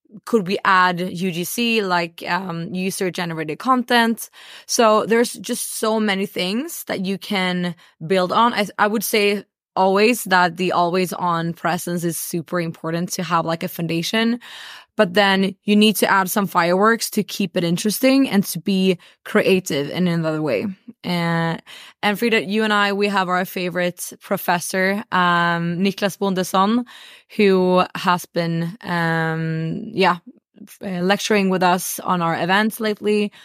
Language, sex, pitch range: English, female, 175-205 Hz